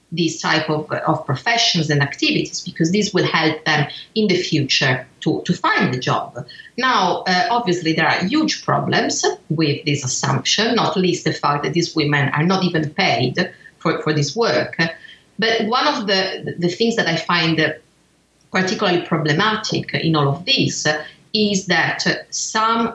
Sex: female